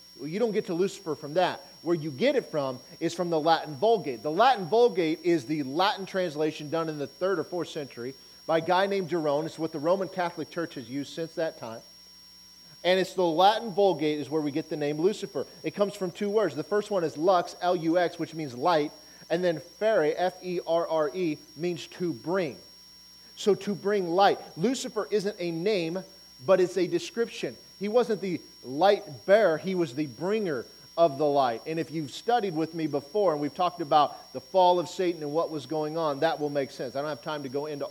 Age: 40-59